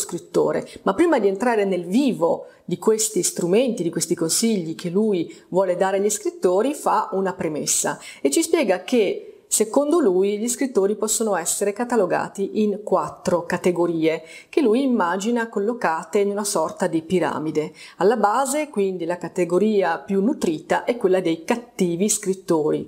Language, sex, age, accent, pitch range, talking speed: Italian, female, 30-49, native, 180-235 Hz, 150 wpm